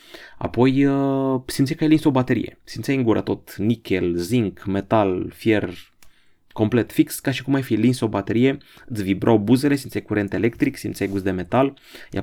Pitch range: 95-125 Hz